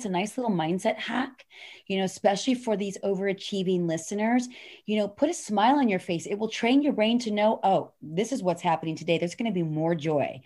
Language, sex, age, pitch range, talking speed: English, female, 30-49, 180-225 Hz, 230 wpm